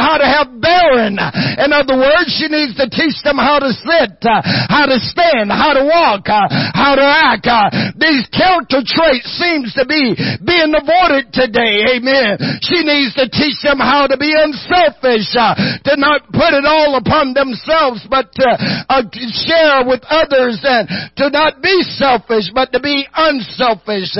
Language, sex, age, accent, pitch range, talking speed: English, male, 50-69, American, 210-280 Hz, 175 wpm